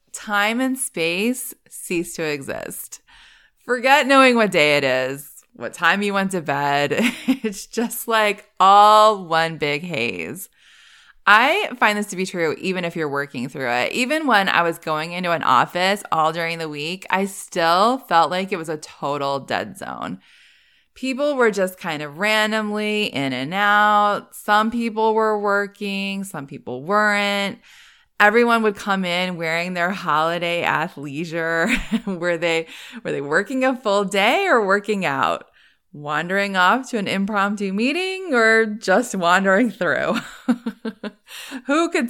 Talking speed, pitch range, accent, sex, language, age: 150 wpm, 165-225 Hz, American, female, English, 20-39